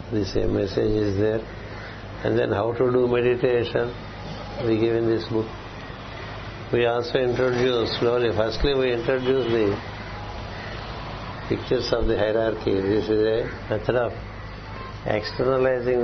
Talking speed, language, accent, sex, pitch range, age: 125 wpm, Telugu, native, male, 105-130 Hz, 60-79